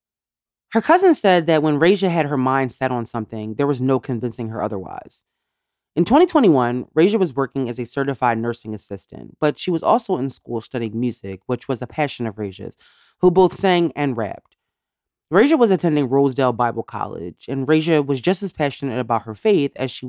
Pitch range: 120-165 Hz